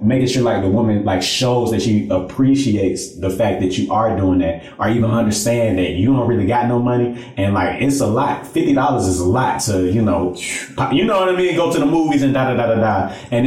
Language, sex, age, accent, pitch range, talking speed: English, male, 30-49, American, 95-120 Hz, 250 wpm